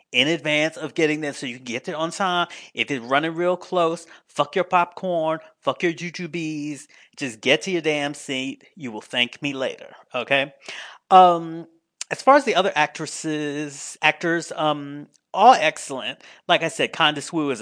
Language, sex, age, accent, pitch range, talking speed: English, male, 30-49, American, 130-175 Hz, 175 wpm